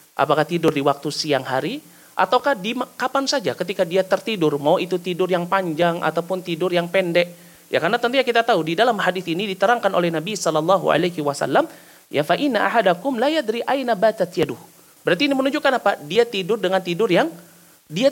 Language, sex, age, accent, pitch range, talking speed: Indonesian, male, 30-49, native, 165-240 Hz, 170 wpm